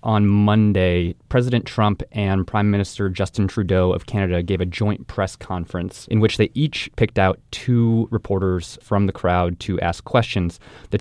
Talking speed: 170 wpm